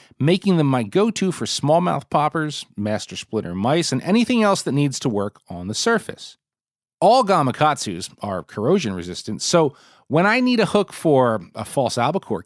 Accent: American